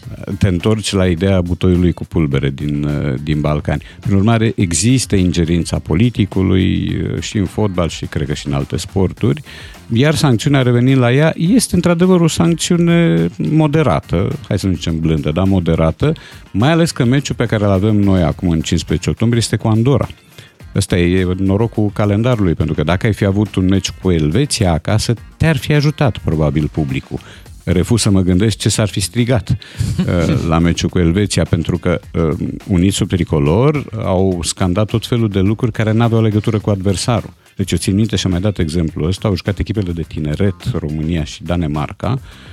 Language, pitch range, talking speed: Romanian, 85-125 Hz, 180 wpm